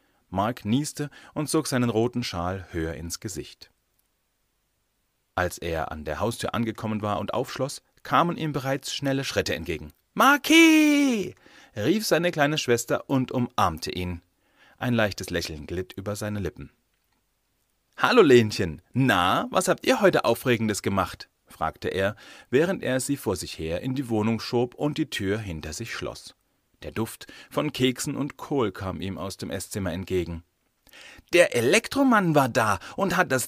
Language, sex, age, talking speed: German, male, 40-59, 155 wpm